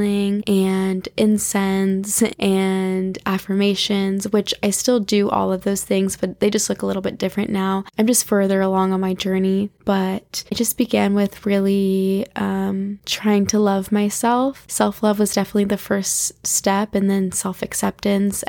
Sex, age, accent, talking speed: female, 10-29, American, 155 wpm